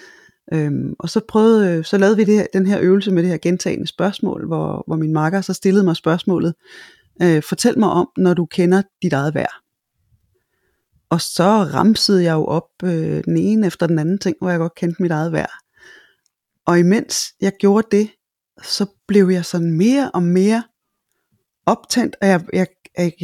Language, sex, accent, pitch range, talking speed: Danish, female, native, 170-205 Hz, 185 wpm